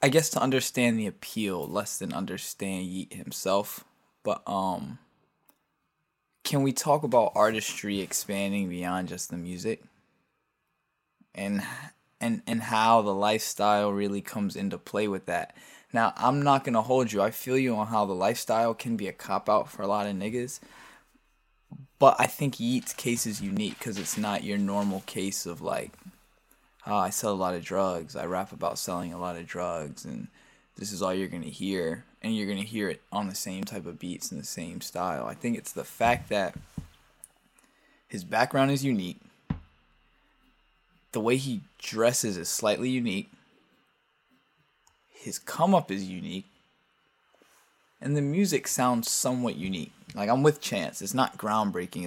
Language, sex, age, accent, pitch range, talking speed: English, male, 20-39, American, 100-130 Hz, 170 wpm